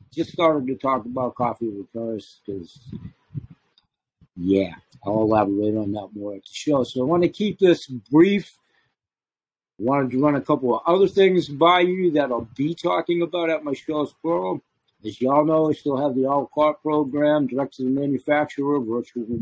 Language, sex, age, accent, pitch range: Chinese, male, 60-79, American, 120-155 Hz